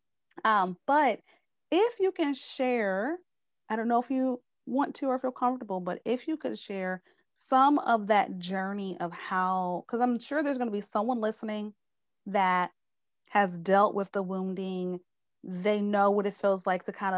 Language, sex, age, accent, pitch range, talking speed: English, female, 30-49, American, 180-220 Hz, 175 wpm